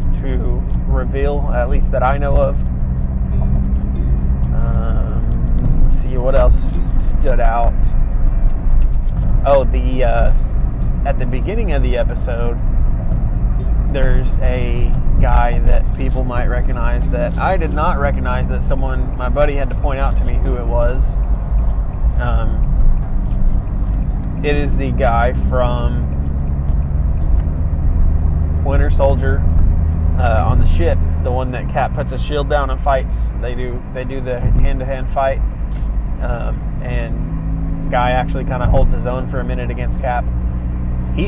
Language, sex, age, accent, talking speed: English, male, 20-39, American, 140 wpm